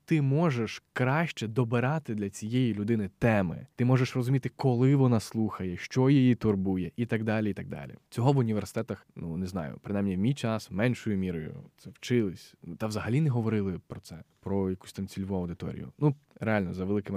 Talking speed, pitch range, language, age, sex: 180 wpm, 100-125 Hz, Ukrainian, 20-39, male